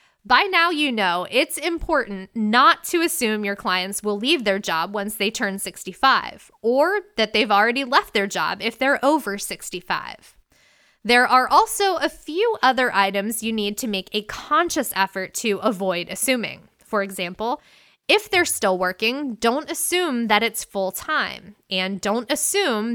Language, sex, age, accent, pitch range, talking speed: English, female, 20-39, American, 195-285 Hz, 160 wpm